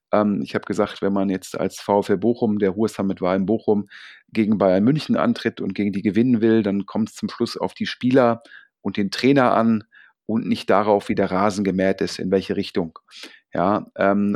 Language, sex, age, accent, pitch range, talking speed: German, male, 40-59, German, 105-135 Hz, 205 wpm